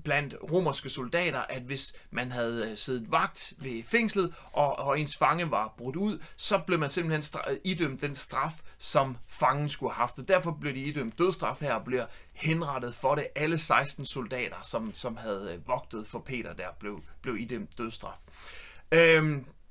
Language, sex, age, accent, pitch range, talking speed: Danish, male, 30-49, native, 135-180 Hz, 175 wpm